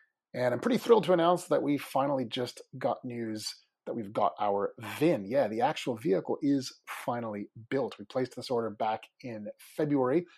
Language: English